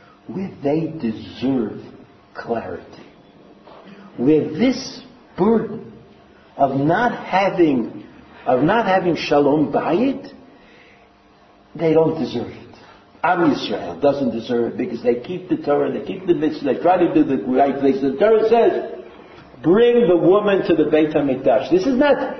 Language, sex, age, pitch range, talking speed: English, male, 60-79, 150-250 Hz, 140 wpm